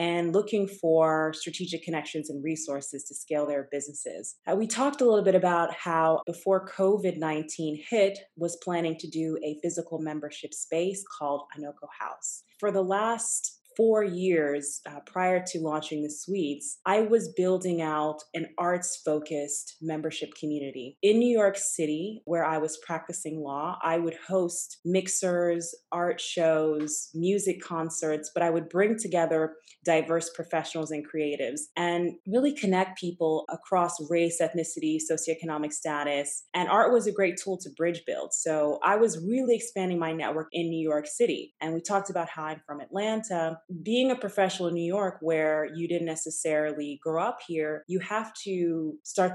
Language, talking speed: English, 160 wpm